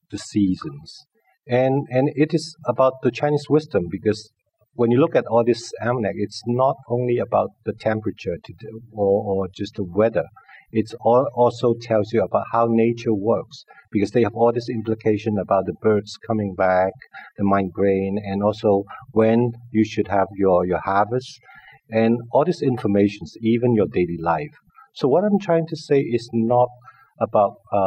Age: 50-69